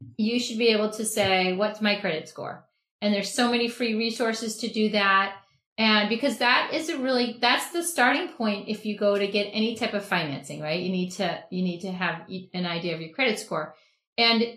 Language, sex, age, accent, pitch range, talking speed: English, female, 40-59, American, 185-230 Hz, 220 wpm